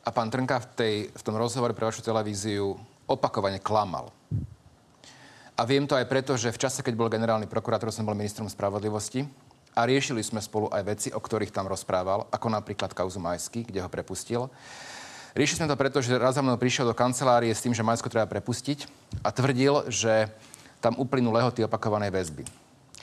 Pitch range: 105-130 Hz